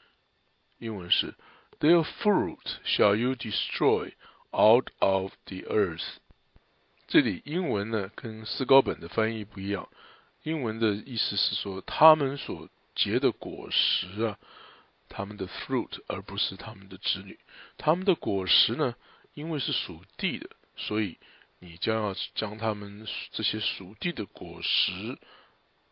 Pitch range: 100-140 Hz